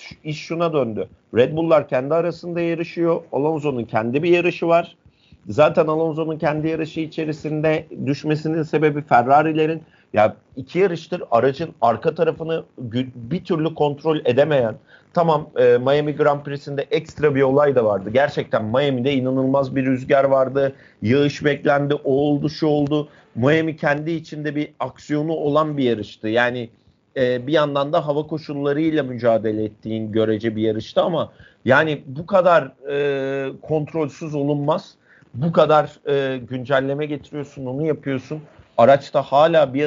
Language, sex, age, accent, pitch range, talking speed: Turkish, male, 50-69, native, 130-155 Hz, 135 wpm